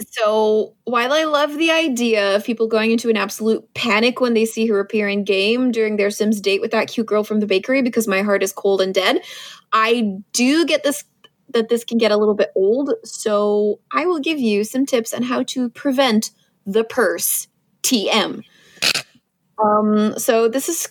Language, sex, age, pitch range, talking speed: English, female, 20-39, 205-255 Hz, 195 wpm